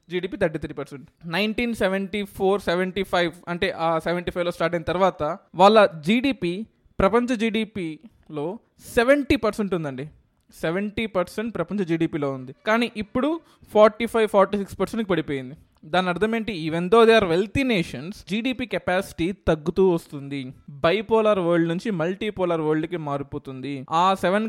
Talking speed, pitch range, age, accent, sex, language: 135 wpm, 160-210 Hz, 20-39, native, male, Telugu